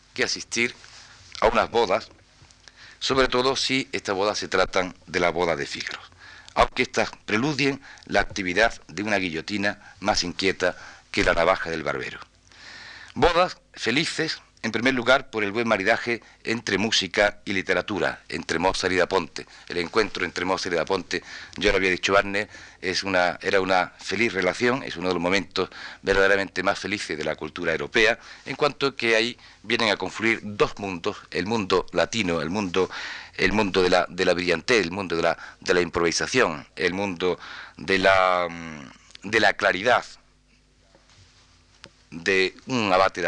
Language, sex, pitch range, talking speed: Spanish, male, 90-110 Hz, 155 wpm